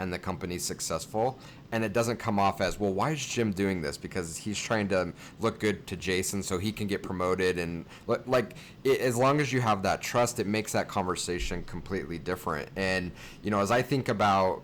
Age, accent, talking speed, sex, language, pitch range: 30-49, American, 215 wpm, male, English, 90-110 Hz